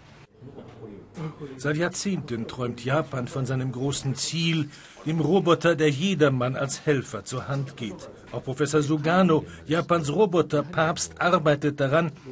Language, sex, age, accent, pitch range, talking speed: German, male, 50-69, German, 140-175 Hz, 115 wpm